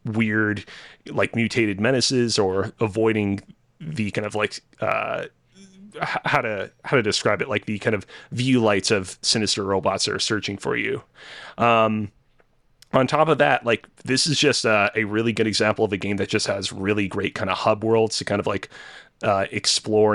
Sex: male